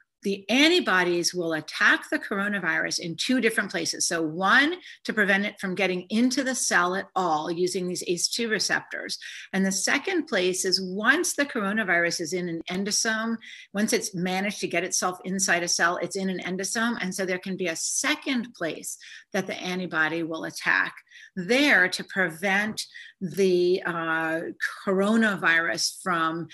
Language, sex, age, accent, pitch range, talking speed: English, female, 50-69, American, 175-230 Hz, 160 wpm